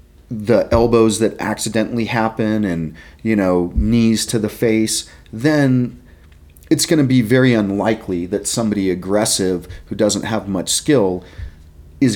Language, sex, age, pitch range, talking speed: English, male, 40-59, 75-120 Hz, 140 wpm